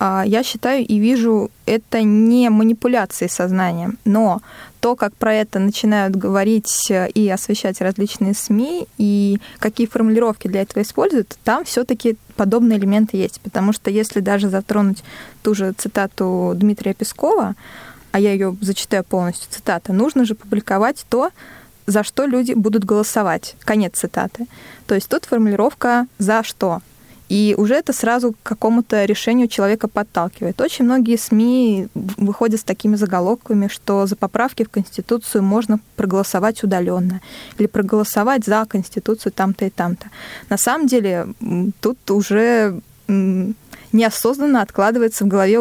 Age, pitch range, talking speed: 20-39, 200-230 Hz, 135 wpm